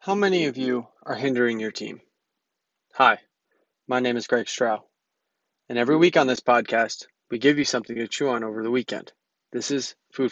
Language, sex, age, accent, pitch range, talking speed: English, male, 20-39, American, 120-140 Hz, 190 wpm